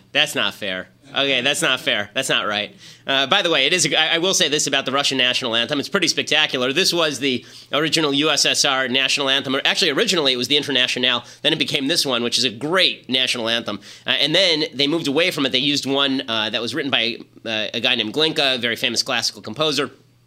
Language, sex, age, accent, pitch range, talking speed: English, male, 30-49, American, 120-145 Hz, 235 wpm